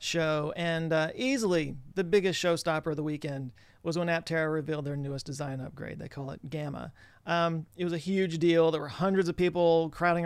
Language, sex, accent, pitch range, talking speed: English, male, American, 155-180 Hz, 200 wpm